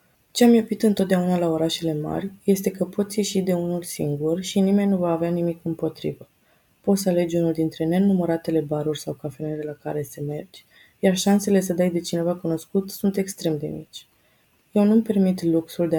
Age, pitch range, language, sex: 20-39, 155-185 Hz, Romanian, female